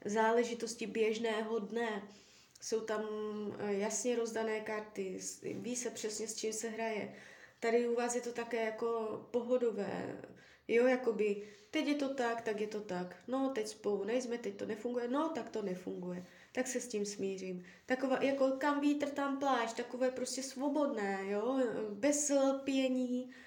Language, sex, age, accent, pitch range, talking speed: Czech, female, 20-39, native, 205-245 Hz, 155 wpm